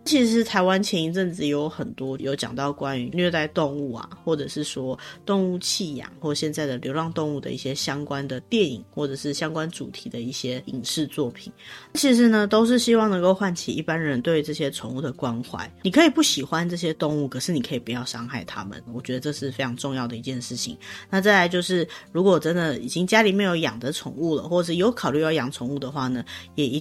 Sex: female